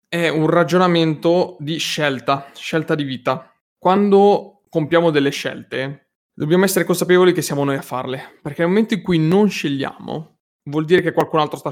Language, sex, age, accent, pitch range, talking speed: Italian, male, 20-39, native, 135-165 Hz, 170 wpm